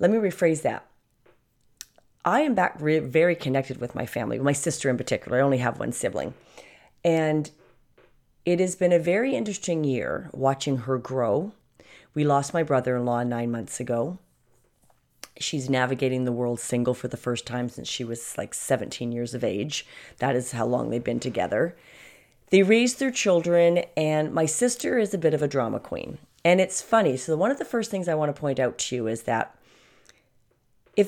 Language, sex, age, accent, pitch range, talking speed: English, female, 40-59, American, 125-175 Hz, 185 wpm